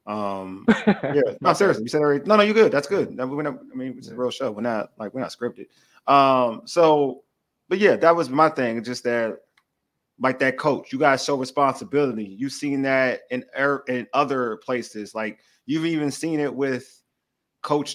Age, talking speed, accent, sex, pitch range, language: 30-49, 200 wpm, American, male, 125-160 Hz, English